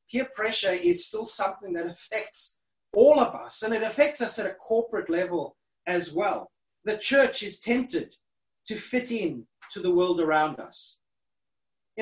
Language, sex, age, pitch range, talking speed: English, male, 30-49, 185-245 Hz, 165 wpm